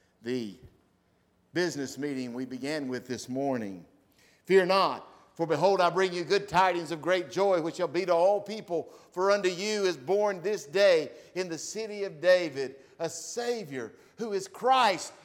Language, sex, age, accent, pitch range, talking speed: English, male, 50-69, American, 135-210 Hz, 170 wpm